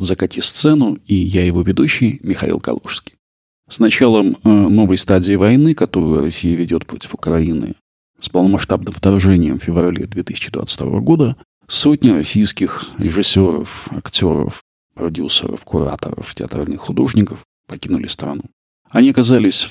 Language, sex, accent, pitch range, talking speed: Russian, male, native, 90-110 Hz, 115 wpm